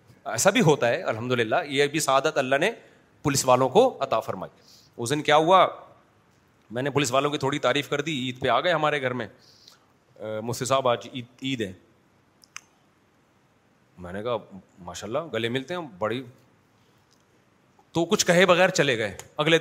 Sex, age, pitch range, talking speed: male, 30-49, 125-165 Hz, 135 wpm